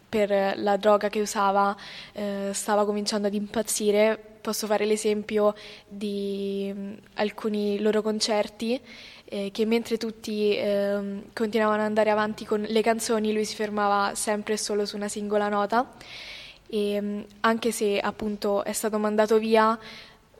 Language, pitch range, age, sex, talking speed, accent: Italian, 205-220 Hz, 10-29, female, 145 wpm, native